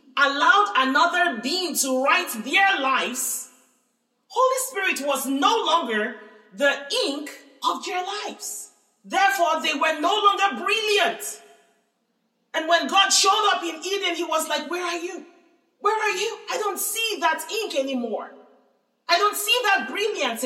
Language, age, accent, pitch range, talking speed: English, 40-59, Nigerian, 255-390 Hz, 145 wpm